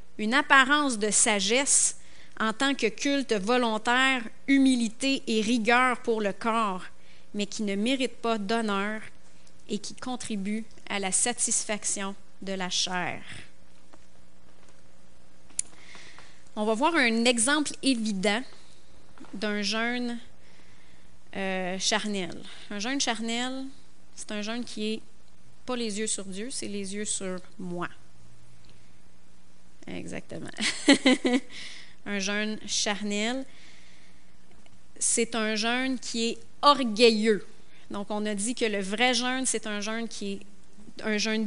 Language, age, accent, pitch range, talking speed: French, 30-49, Canadian, 190-240 Hz, 120 wpm